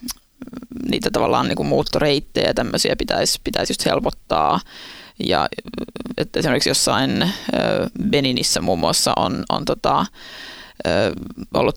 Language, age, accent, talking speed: Finnish, 20-39, native, 105 wpm